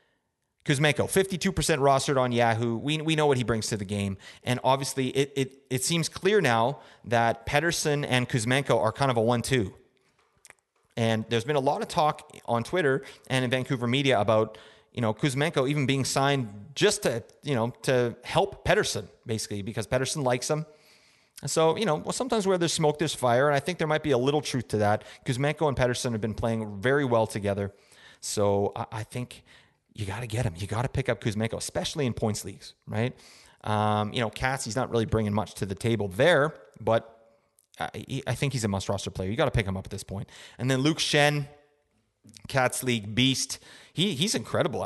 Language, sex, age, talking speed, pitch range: English, male, 30-49, 205 wpm, 115-150 Hz